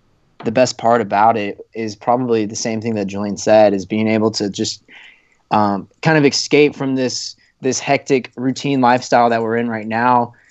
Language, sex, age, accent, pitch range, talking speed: English, male, 20-39, American, 110-130 Hz, 190 wpm